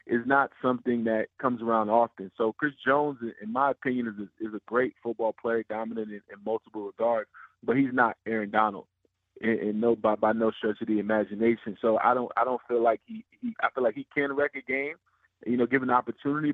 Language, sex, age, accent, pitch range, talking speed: English, male, 20-39, American, 110-130 Hz, 220 wpm